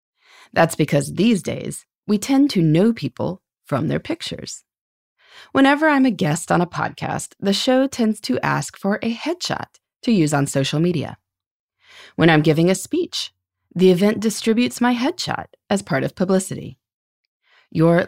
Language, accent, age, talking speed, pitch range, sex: English, American, 30-49, 155 wpm, 150-245 Hz, female